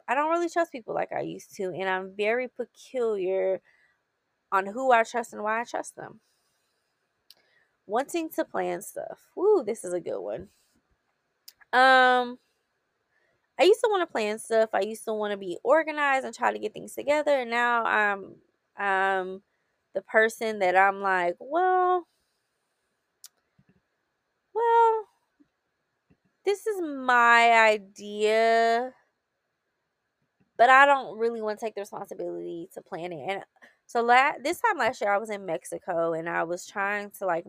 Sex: female